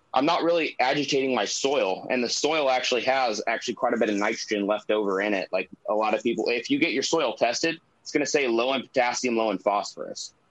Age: 20-39